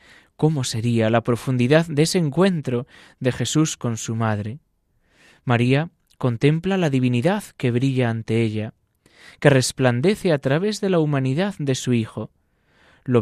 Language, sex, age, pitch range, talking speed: Spanish, male, 20-39, 115-150 Hz, 140 wpm